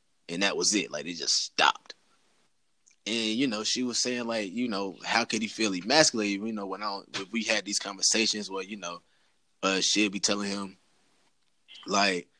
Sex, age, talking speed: male, 20-39, 195 wpm